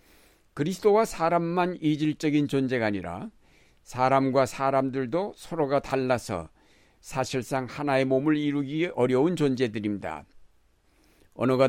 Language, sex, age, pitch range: Korean, male, 60-79, 120-150 Hz